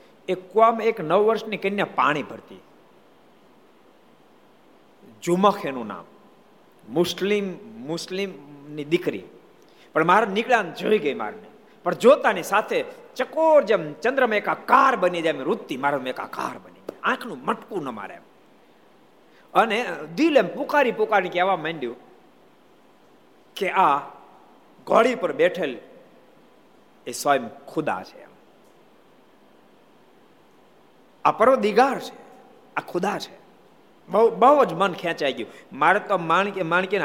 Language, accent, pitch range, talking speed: Gujarati, native, 160-230 Hz, 65 wpm